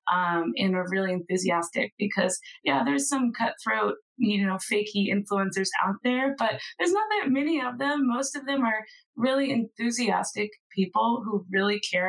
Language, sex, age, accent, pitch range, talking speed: English, female, 20-39, American, 185-240 Hz, 165 wpm